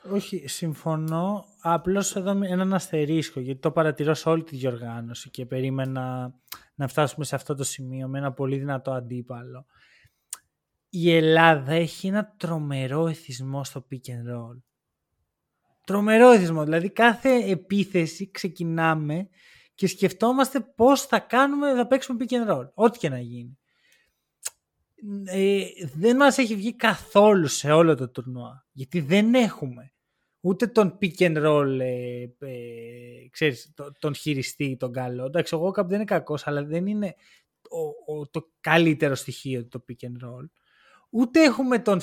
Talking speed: 145 wpm